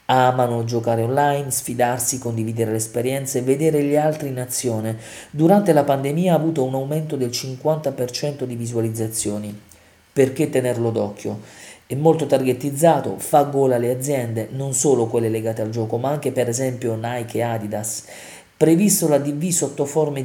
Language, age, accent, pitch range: Italian, 40-59, native, 115-145 Hz